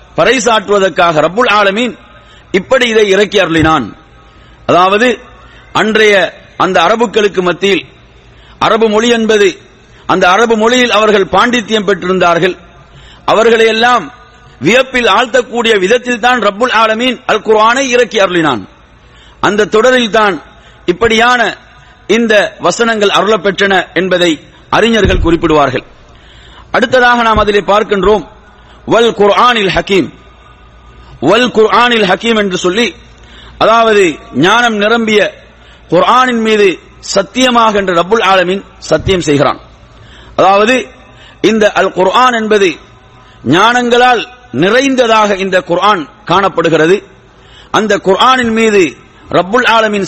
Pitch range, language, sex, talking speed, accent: 190-240 Hz, English, male, 90 wpm, Indian